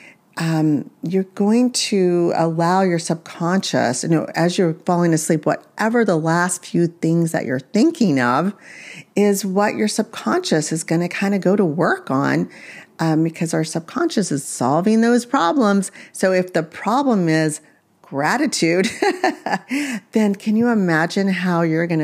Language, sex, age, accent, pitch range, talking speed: English, female, 40-59, American, 155-215 Hz, 150 wpm